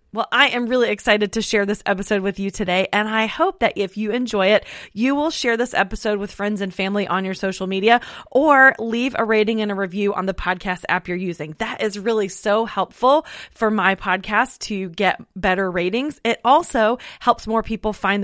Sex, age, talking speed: female, 20-39, 210 wpm